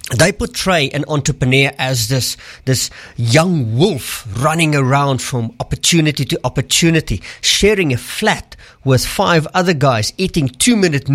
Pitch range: 125-175 Hz